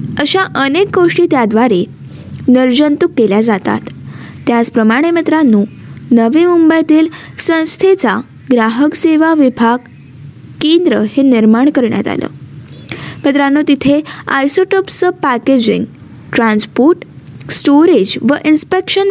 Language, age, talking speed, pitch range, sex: Marathi, 20-39, 90 wpm, 245-325 Hz, female